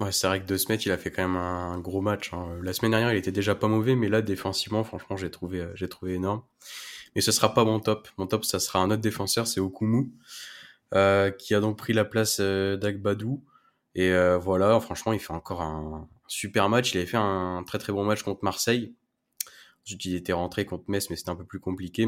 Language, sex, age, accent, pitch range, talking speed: French, male, 20-39, French, 90-110 Hz, 235 wpm